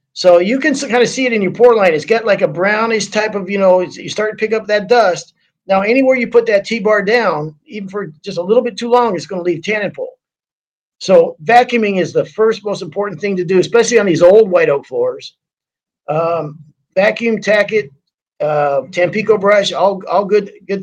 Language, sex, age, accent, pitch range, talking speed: English, male, 50-69, American, 175-225 Hz, 220 wpm